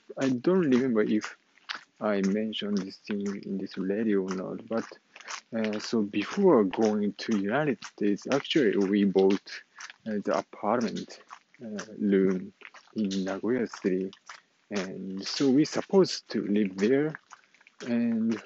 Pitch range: 100-125 Hz